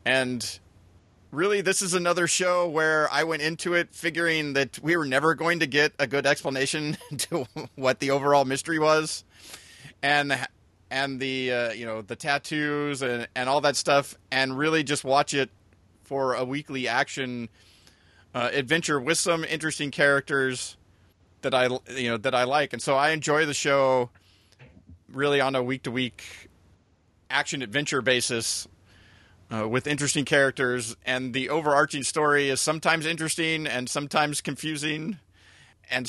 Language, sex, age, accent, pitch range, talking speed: English, male, 30-49, American, 105-145 Hz, 150 wpm